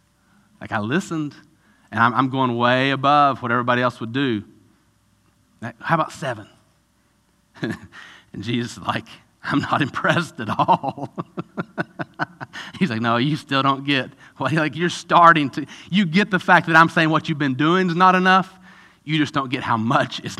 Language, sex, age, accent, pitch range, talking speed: English, male, 40-59, American, 115-150 Hz, 175 wpm